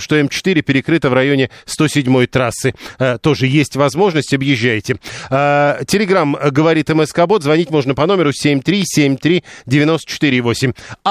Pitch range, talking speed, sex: 130-160 Hz, 105 wpm, male